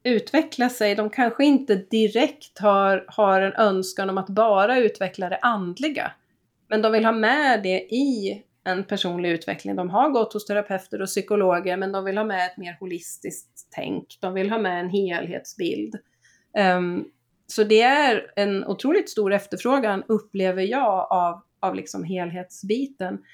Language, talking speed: Swedish, 155 wpm